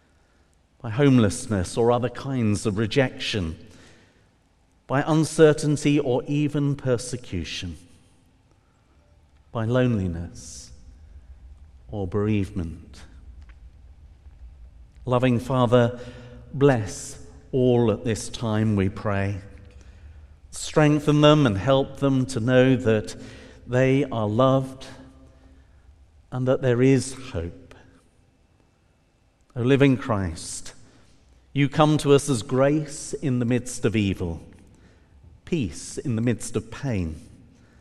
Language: English